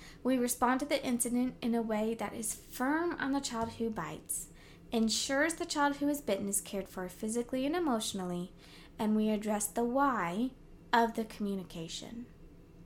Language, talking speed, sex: English, 170 wpm, female